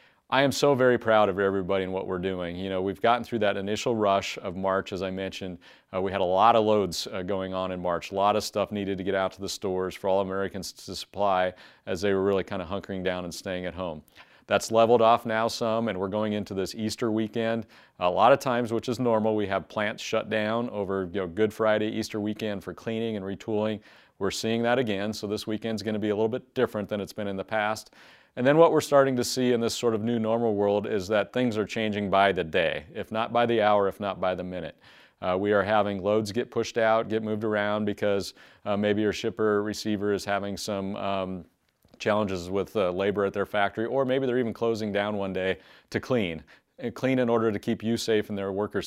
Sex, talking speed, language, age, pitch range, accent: male, 245 wpm, English, 40-59, 95-110 Hz, American